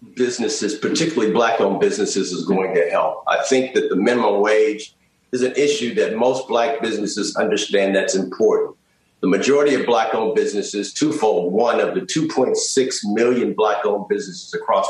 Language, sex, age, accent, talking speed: English, male, 50-69, American, 165 wpm